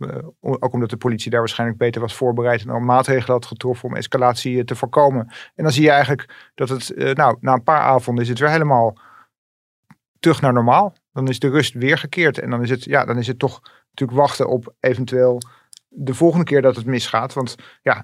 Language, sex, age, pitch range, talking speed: Dutch, male, 40-59, 125-145 Hz, 205 wpm